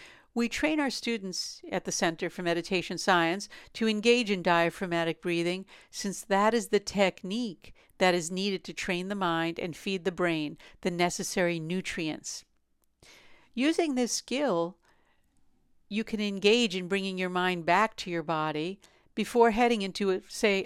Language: English